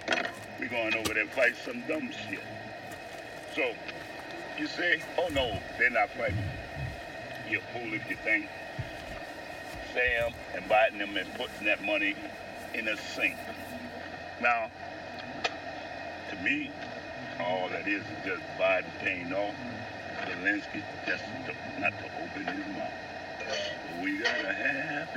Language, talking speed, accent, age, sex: English, 140 wpm, American, 60-79, male